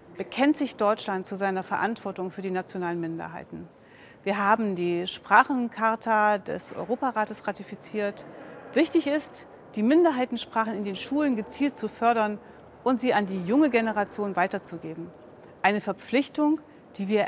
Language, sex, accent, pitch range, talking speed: German, female, German, 185-245 Hz, 130 wpm